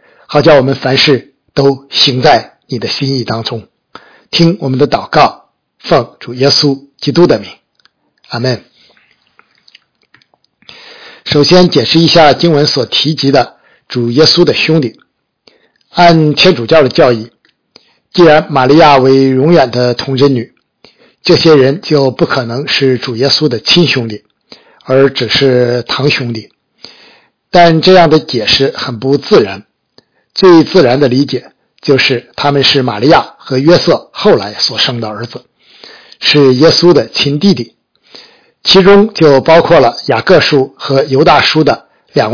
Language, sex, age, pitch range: Chinese, male, 50-69, 130-160 Hz